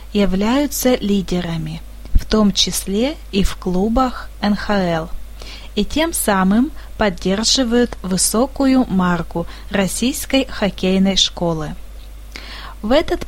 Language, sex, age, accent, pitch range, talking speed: Russian, female, 20-39, native, 190-245 Hz, 90 wpm